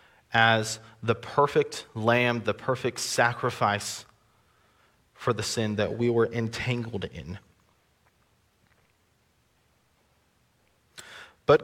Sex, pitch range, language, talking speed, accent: male, 105-125 Hz, English, 80 wpm, American